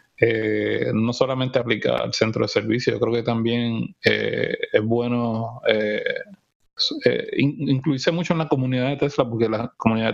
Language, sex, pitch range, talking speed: Spanish, male, 115-150 Hz, 160 wpm